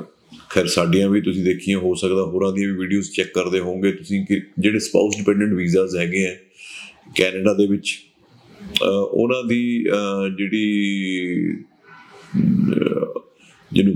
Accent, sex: native, male